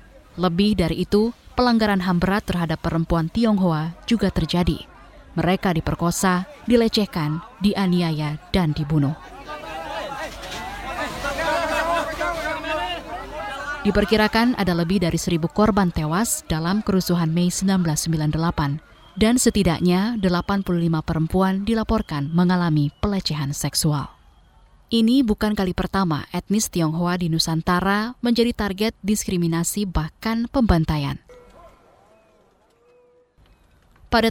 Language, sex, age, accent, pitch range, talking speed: Indonesian, female, 20-39, native, 165-215 Hz, 85 wpm